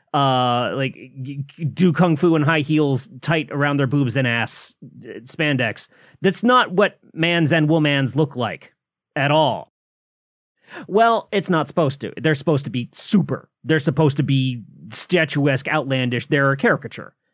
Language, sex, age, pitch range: English, male, 30-49, 130-165 Hz